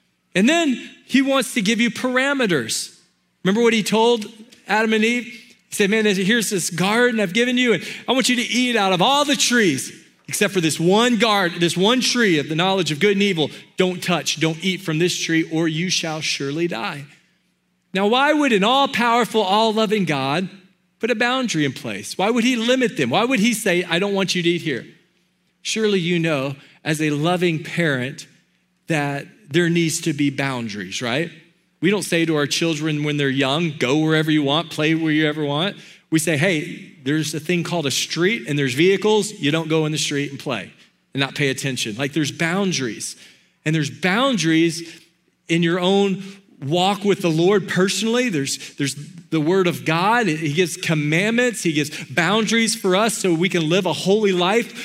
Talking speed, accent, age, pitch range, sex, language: 200 wpm, American, 40-59, 160-215 Hz, male, English